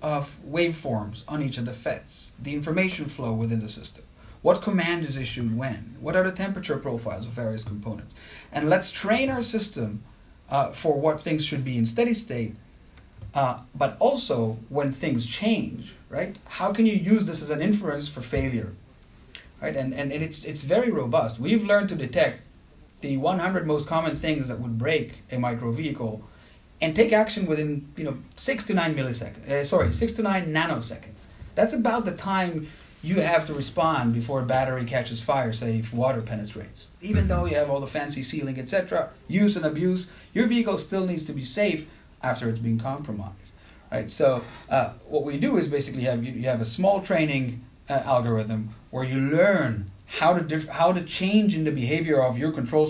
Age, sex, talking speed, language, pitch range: 30-49, male, 190 wpm, English, 115-170 Hz